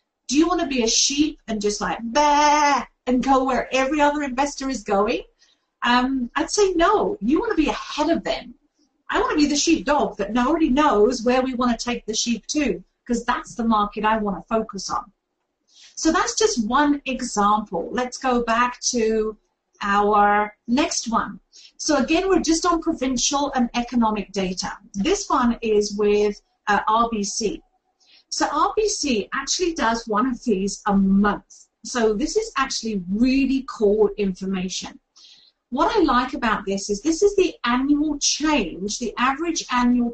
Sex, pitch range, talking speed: female, 215-295 Hz, 170 wpm